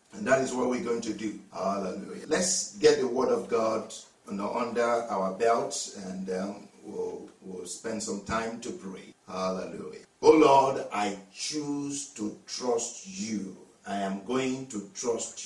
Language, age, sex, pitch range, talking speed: English, 50-69, male, 110-150 Hz, 155 wpm